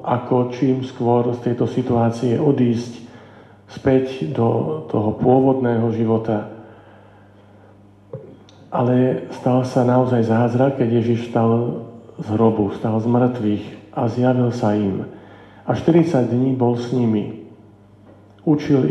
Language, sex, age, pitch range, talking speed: Slovak, male, 50-69, 110-130 Hz, 115 wpm